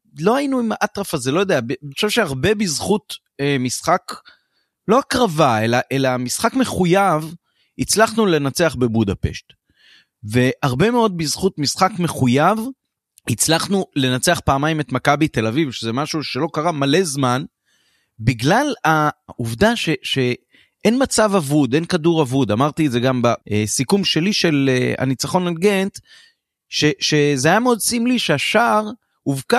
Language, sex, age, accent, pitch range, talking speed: Hebrew, male, 30-49, native, 130-200 Hz, 130 wpm